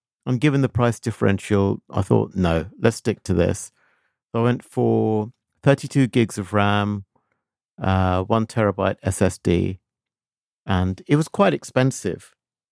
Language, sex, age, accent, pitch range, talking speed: English, male, 50-69, British, 100-130 Hz, 135 wpm